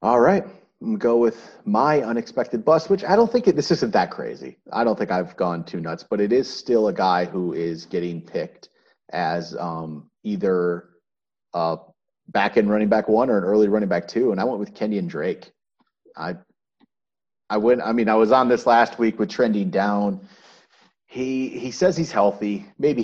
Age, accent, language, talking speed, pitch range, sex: 30-49, American, English, 205 wpm, 100-145 Hz, male